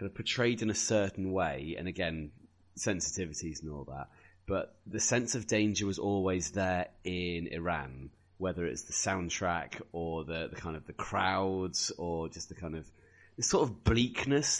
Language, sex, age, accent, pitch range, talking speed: English, male, 30-49, British, 80-100 Hz, 170 wpm